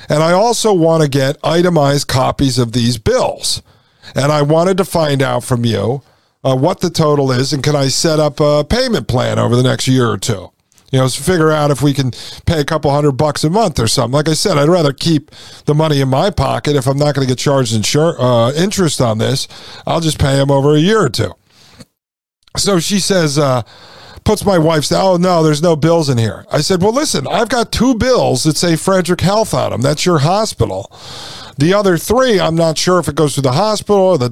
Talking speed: 225 wpm